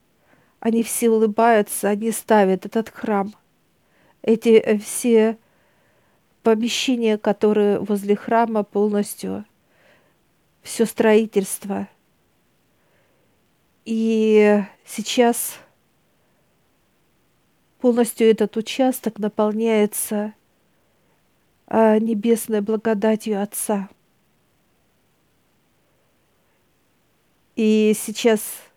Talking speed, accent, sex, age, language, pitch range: 55 wpm, native, female, 50-69, Russian, 205-225 Hz